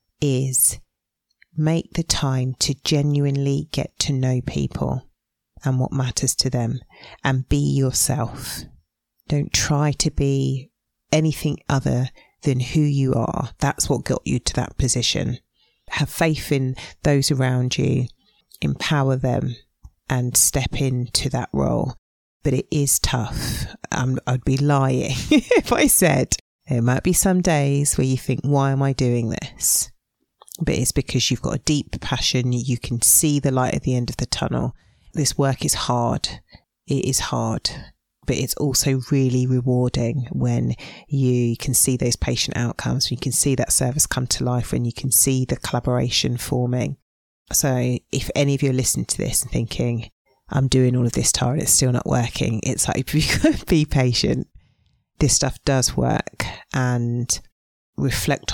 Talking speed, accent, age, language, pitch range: 160 wpm, British, 40-59, English, 125-140 Hz